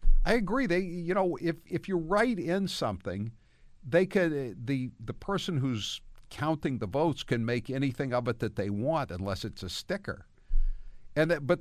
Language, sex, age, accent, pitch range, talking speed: English, male, 50-69, American, 95-140 Hz, 180 wpm